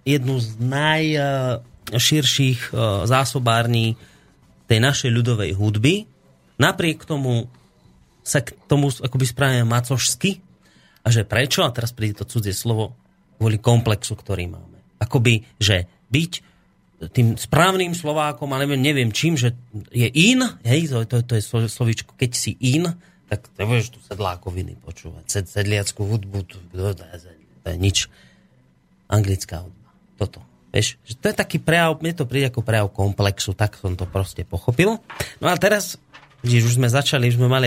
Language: Slovak